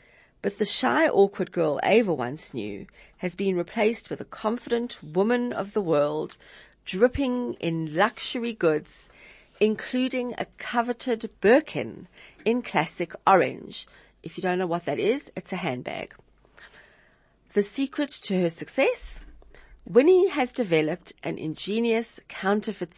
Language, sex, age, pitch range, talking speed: English, female, 40-59, 165-230 Hz, 130 wpm